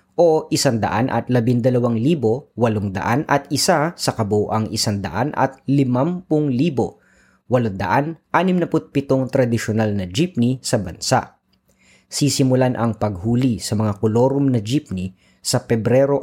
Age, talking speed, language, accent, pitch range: 20-39, 125 wpm, Filipino, native, 105-135 Hz